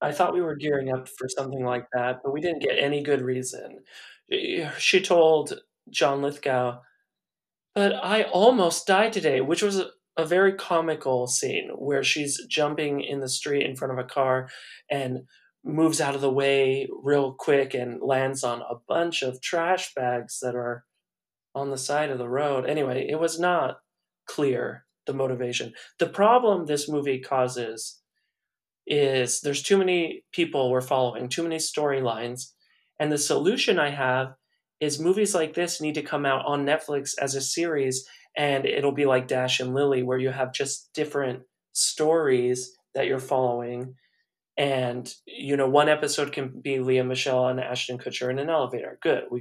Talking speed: 170 wpm